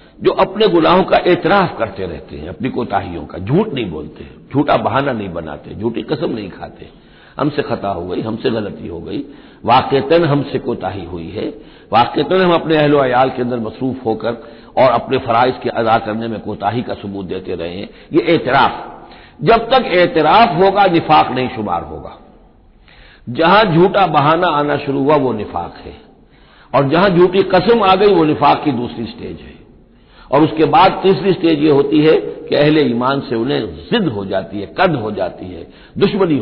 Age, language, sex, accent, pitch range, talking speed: 60-79, Hindi, male, native, 115-165 Hz, 180 wpm